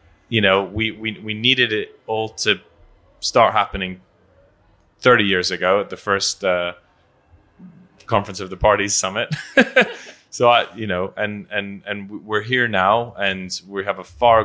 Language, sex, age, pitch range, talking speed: French, male, 20-39, 85-100 Hz, 160 wpm